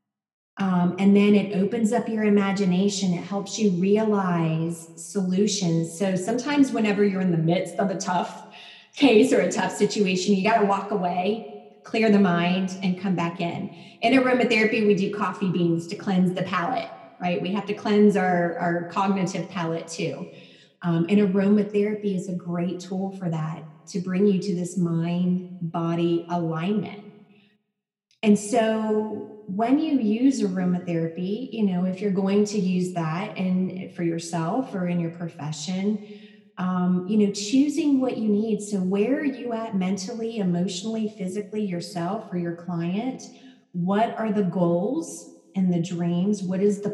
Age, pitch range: 30-49, 180-210 Hz